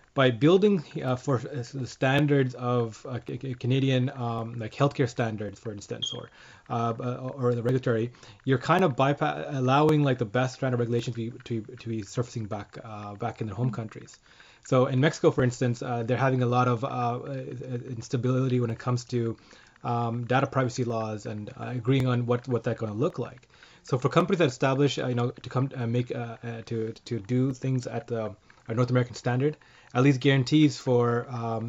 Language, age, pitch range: English, 20-39, 120-135 Hz